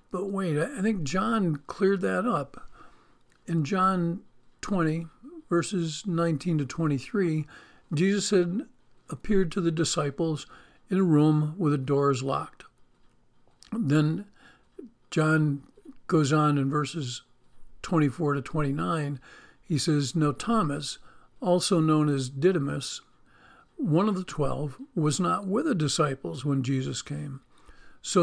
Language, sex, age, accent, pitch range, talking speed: English, male, 50-69, American, 145-185 Hz, 125 wpm